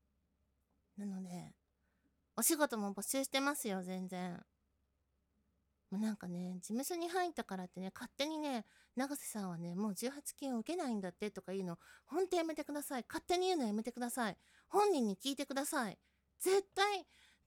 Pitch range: 175-285 Hz